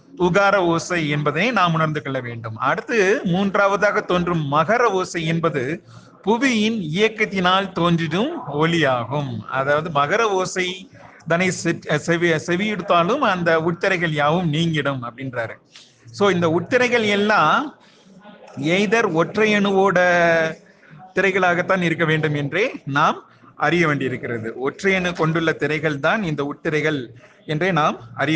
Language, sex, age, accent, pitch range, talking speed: Tamil, male, 30-49, native, 150-195 Hz, 110 wpm